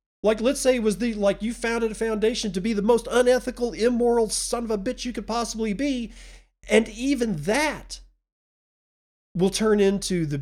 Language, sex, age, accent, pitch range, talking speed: English, male, 40-59, American, 135-190 Hz, 185 wpm